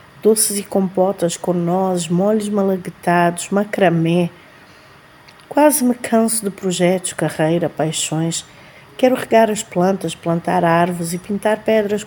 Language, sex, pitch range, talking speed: Portuguese, female, 175-220 Hz, 120 wpm